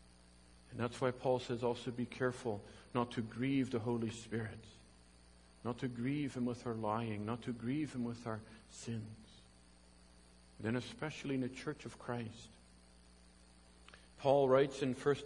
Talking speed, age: 150 wpm, 50-69